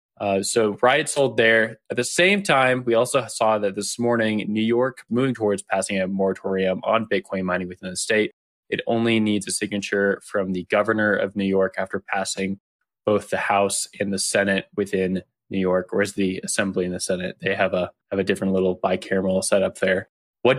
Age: 20-39